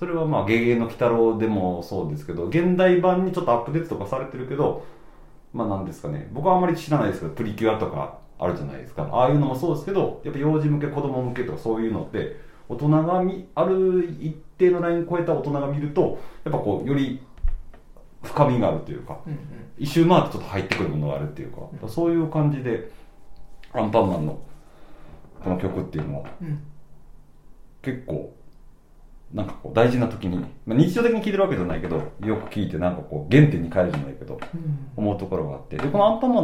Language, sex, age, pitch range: Japanese, male, 40-59, 95-160 Hz